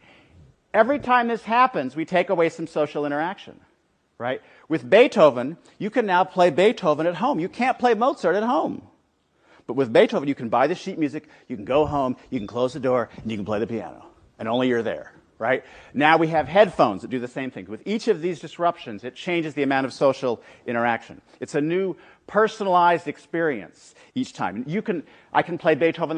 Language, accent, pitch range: English, American, 145-195 Hz